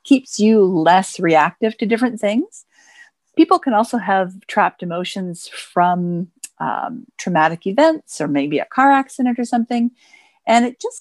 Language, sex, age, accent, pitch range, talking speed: English, female, 50-69, American, 170-245 Hz, 145 wpm